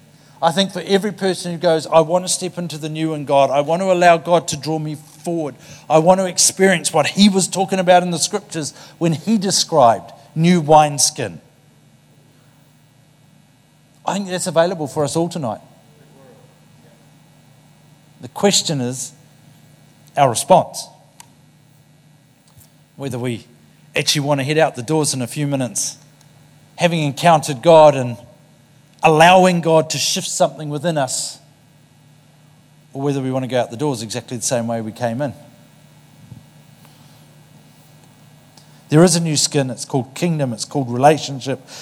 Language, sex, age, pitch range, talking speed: English, male, 50-69, 140-160 Hz, 150 wpm